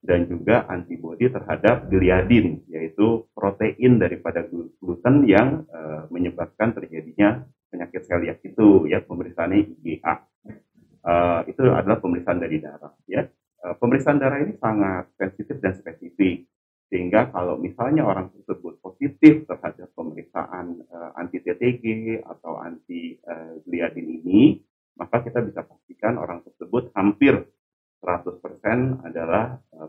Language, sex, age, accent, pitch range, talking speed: Indonesian, male, 30-49, native, 85-120 Hz, 120 wpm